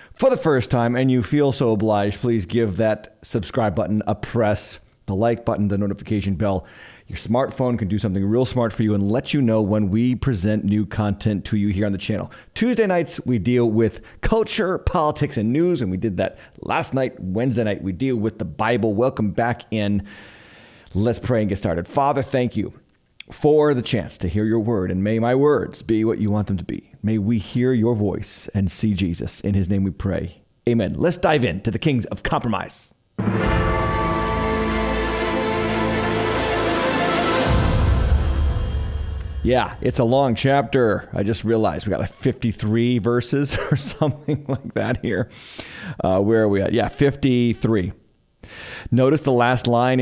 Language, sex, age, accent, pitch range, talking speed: English, male, 30-49, American, 100-125 Hz, 175 wpm